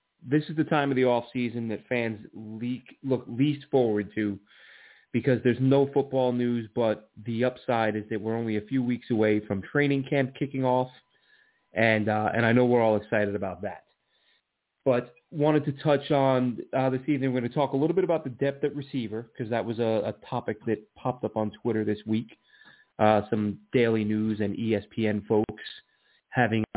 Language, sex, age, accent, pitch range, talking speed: English, male, 30-49, American, 110-130 Hz, 195 wpm